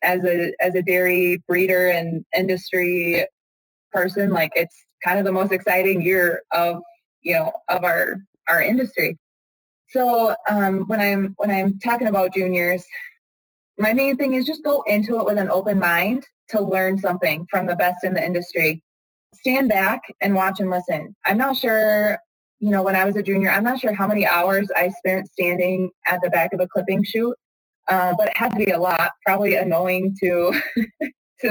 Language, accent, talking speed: English, American, 185 wpm